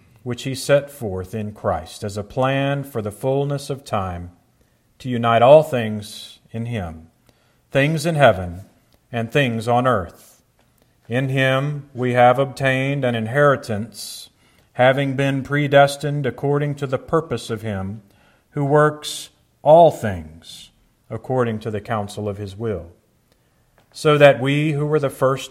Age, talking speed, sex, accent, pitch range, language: 40-59, 145 wpm, male, American, 110-140 Hz, English